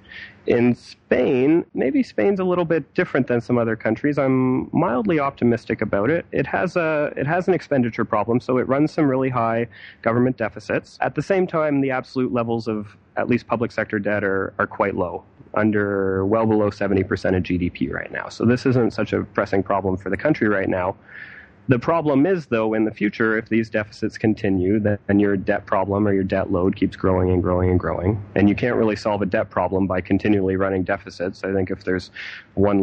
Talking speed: 205 wpm